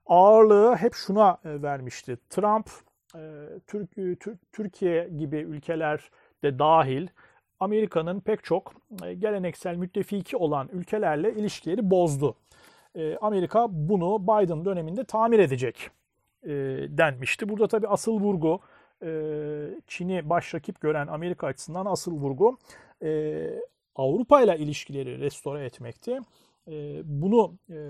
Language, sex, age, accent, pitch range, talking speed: Turkish, male, 40-59, native, 155-215 Hz, 95 wpm